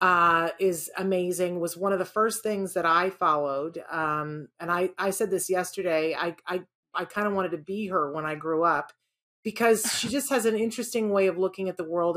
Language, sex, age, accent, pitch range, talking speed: English, female, 40-59, American, 165-200 Hz, 215 wpm